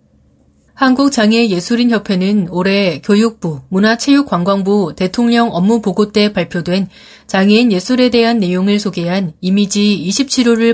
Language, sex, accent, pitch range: Korean, female, native, 185-235 Hz